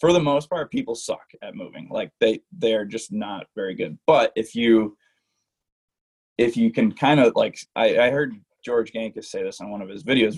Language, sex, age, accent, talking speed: English, male, 20-39, American, 215 wpm